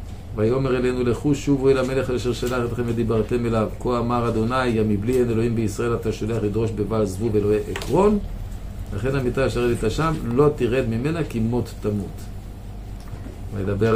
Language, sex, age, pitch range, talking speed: Hebrew, male, 50-69, 100-125 Hz, 165 wpm